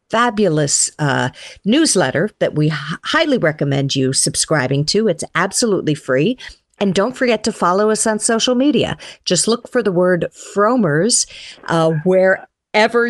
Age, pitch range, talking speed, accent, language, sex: 50-69, 165-245 Hz, 135 wpm, American, English, female